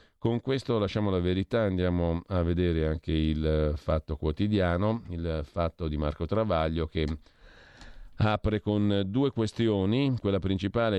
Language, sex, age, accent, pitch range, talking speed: Italian, male, 50-69, native, 80-110 Hz, 130 wpm